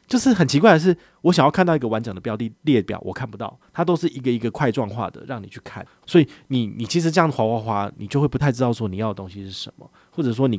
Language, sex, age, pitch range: Chinese, male, 30-49, 100-135 Hz